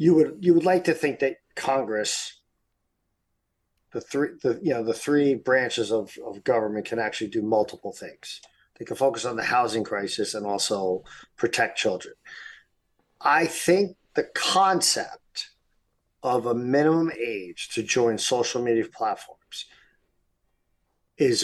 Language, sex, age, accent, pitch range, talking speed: English, male, 50-69, American, 105-145 Hz, 140 wpm